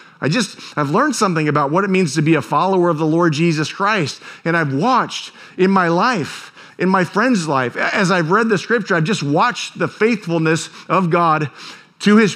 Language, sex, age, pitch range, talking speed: English, male, 50-69, 150-195 Hz, 205 wpm